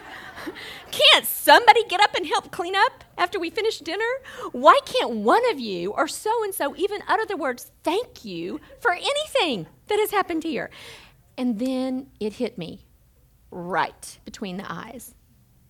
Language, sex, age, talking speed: English, female, 40-59, 155 wpm